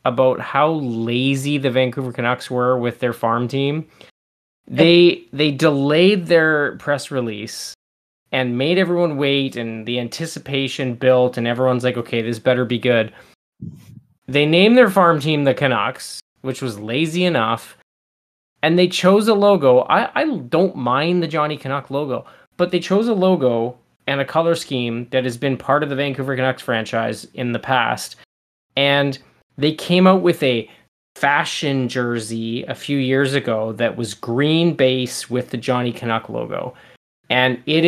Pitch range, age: 120-150 Hz, 20-39